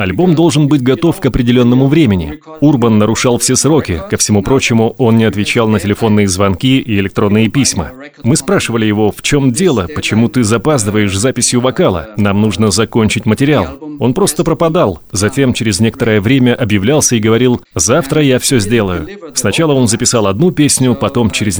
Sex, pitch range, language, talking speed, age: male, 110-140 Hz, Russian, 165 wpm, 30-49